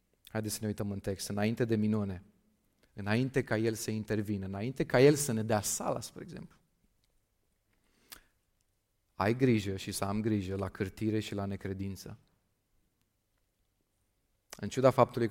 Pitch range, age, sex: 100-120 Hz, 30-49, male